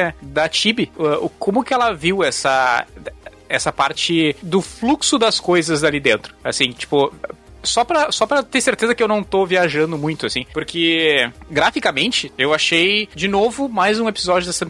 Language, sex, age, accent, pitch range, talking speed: Portuguese, male, 20-39, Brazilian, 155-210 Hz, 160 wpm